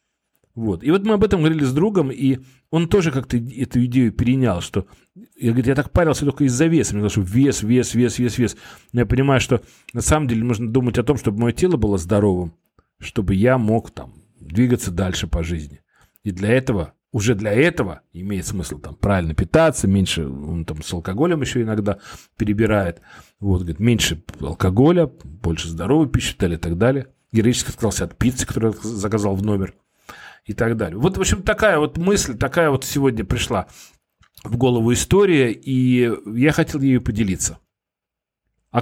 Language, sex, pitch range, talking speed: Russian, male, 100-135 Hz, 180 wpm